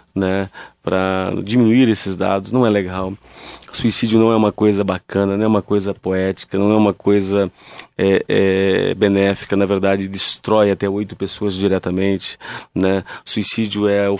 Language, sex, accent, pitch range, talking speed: Portuguese, male, Brazilian, 100-110 Hz, 155 wpm